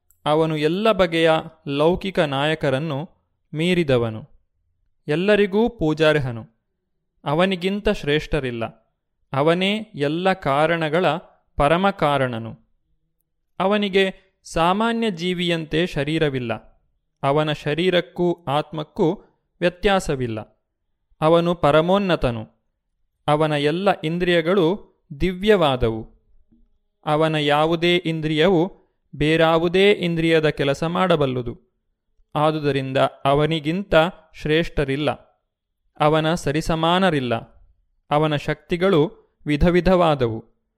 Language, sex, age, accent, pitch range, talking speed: Kannada, male, 30-49, native, 140-175 Hz, 65 wpm